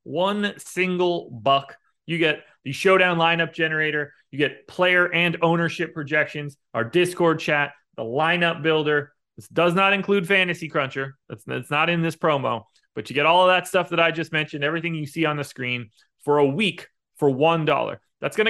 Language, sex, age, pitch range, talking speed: English, male, 30-49, 135-180 Hz, 190 wpm